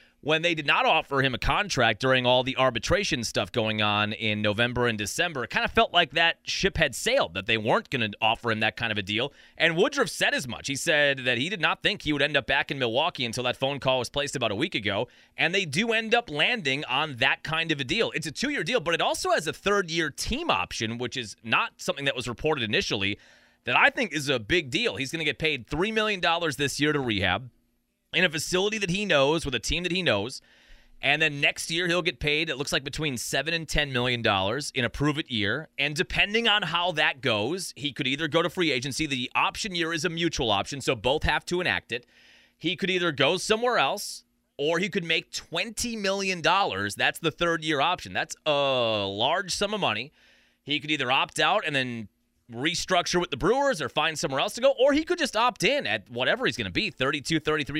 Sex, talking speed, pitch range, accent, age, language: male, 240 wpm, 120-175 Hz, American, 30-49, English